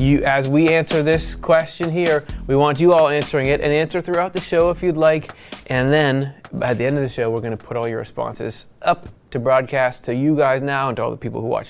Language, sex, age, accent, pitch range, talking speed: English, male, 20-39, American, 115-150 Hz, 250 wpm